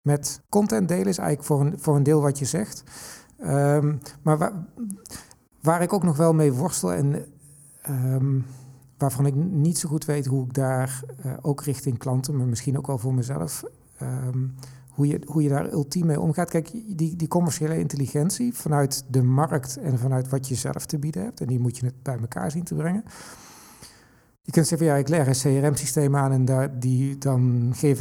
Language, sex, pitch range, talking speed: Dutch, male, 130-155 Hz, 195 wpm